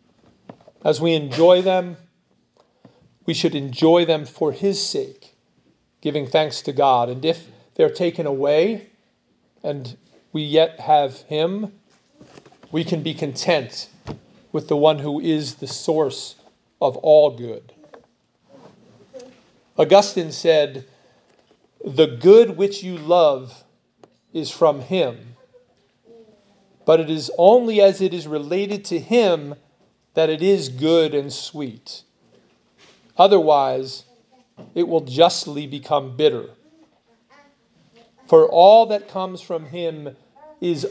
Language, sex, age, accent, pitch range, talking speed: English, male, 40-59, American, 145-185 Hz, 115 wpm